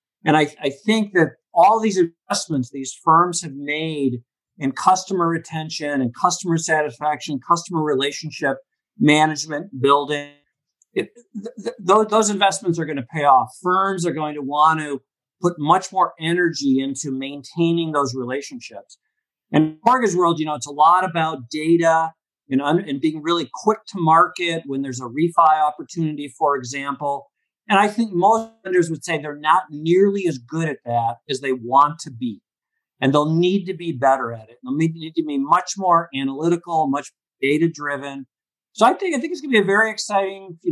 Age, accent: 50-69, American